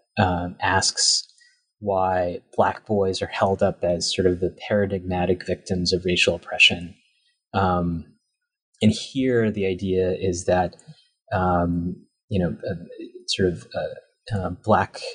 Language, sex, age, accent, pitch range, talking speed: English, male, 30-49, American, 90-115 Hz, 120 wpm